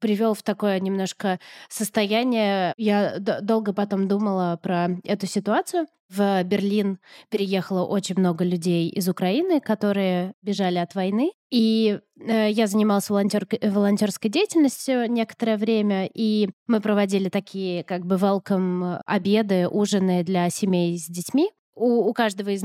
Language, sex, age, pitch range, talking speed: Russian, female, 20-39, 190-220 Hz, 130 wpm